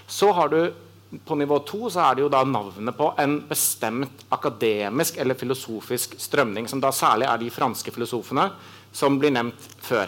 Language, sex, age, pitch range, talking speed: English, male, 40-59, 110-140 Hz, 180 wpm